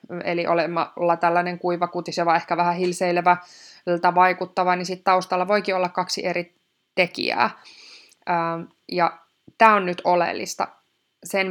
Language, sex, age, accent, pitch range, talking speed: Finnish, female, 20-39, native, 175-205 Hz, 120 wpm